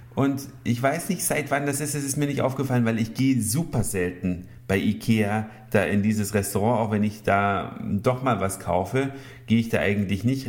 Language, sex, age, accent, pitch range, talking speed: German, male, 50-69, German, 110-140 Hz, 210 wpm